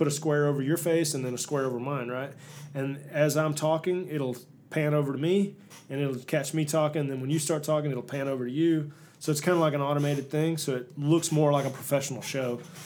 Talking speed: 250 wpm